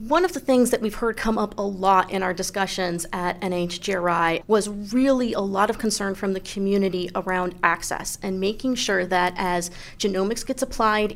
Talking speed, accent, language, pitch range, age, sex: 190 wpm, American, English, 185-220 Hz, 30-49, female